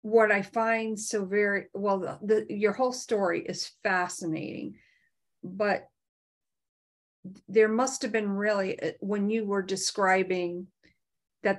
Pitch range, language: 175-210 Hz, English